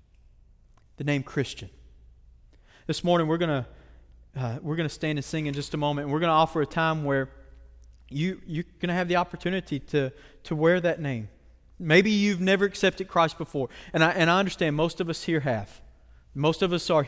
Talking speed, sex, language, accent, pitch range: 195 wpm, male, English, American, 135-175 Hz